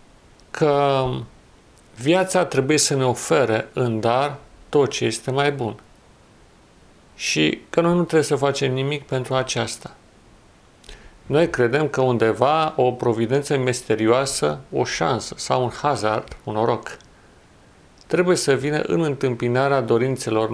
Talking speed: 125 wpm